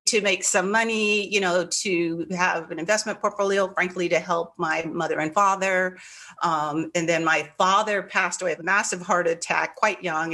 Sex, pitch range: female, 165-205 Hz